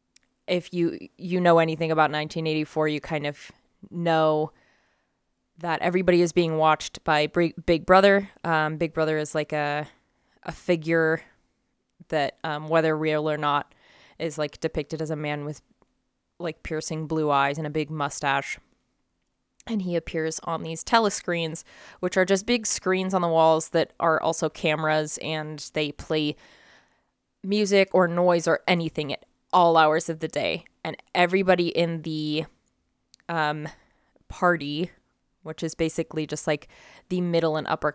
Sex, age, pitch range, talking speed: female, 20-39, 155-175 Hz, 150 wpm